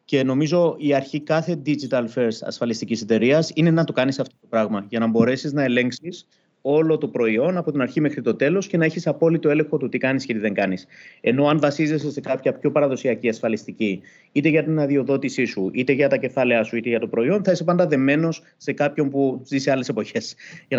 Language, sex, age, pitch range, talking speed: Greek, male, 30-49, 125-160 Hz, 220 wpm